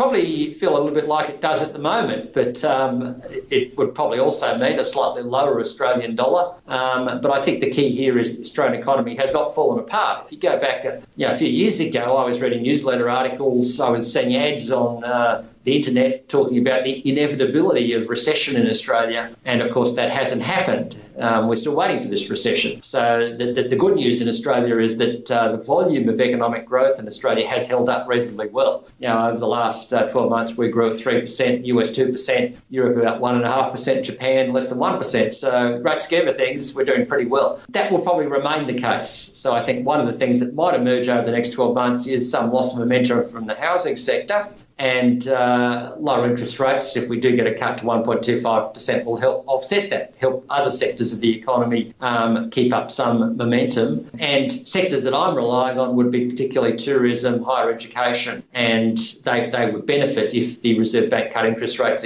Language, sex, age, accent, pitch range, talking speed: English, male, 50-69, Australian, 120-140 Hz, 210 wpm